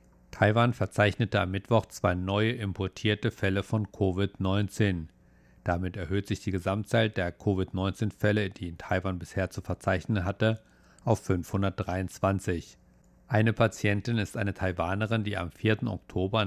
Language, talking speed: German, 130 wpm